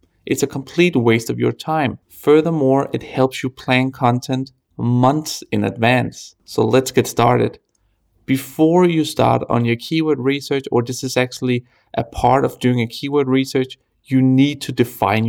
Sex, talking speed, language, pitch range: male, 165 wpm, English, 120-140 Hz